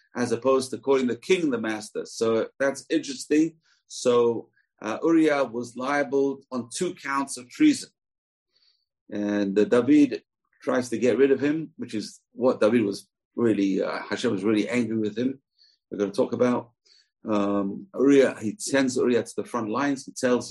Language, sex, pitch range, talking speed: English, male, 110-145 Hz, 175 wpm